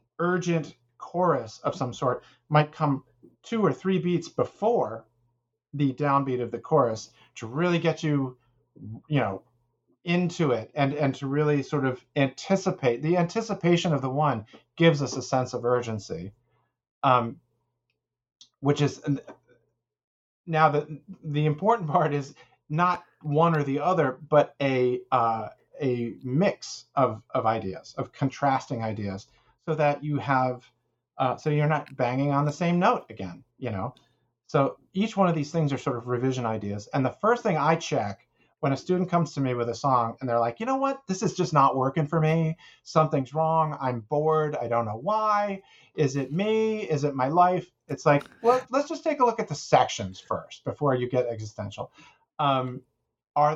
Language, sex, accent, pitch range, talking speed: English, male, American, 125-160 Hz, 175 wpm